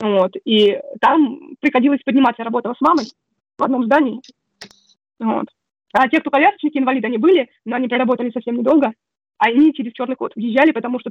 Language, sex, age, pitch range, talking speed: Russian, female, 20-39, 245-290 Hz, 180 wpm